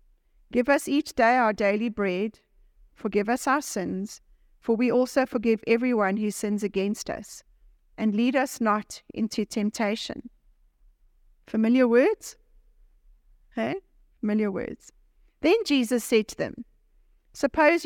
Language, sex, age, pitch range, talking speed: English, female, 40-59, 215-260 Hz, 130 wpm